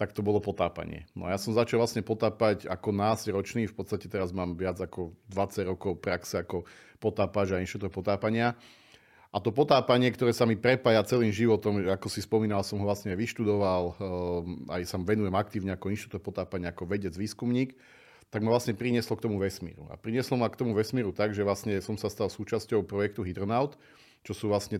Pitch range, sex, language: 95-110 Hz, male, Slovak